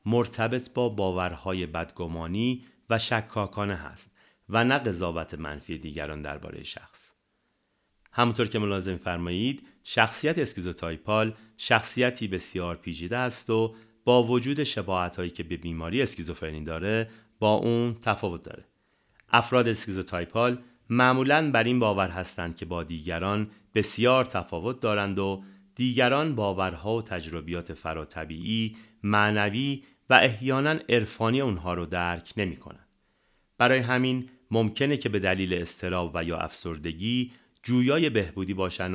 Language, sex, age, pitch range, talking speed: Persian, male, 40-59, 85-115 Hz, 120 wpm